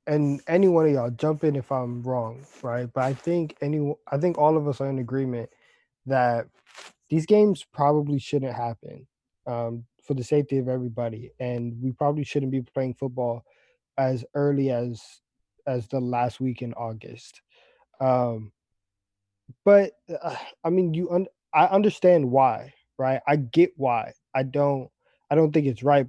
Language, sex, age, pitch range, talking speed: English, male, 20-39, 125-150 Hz, 165 wpm